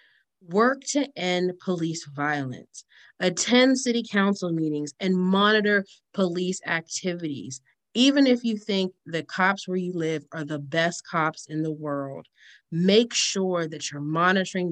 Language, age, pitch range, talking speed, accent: English, 30-49, 155-195 Hz, 140 wpm, American